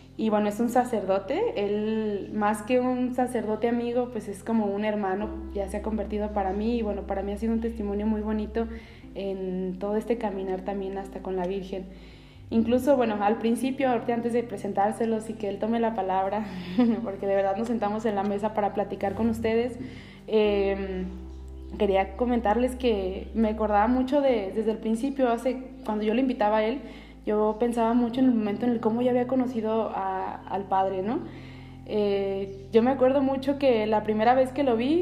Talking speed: 190 wpm